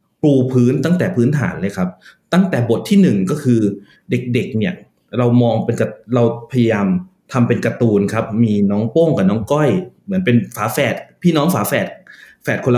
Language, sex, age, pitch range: Thai, male, 20-39, 115-160 Hz